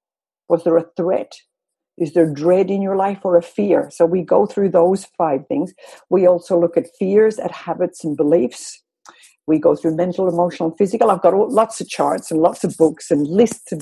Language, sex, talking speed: English, female, 205 wpm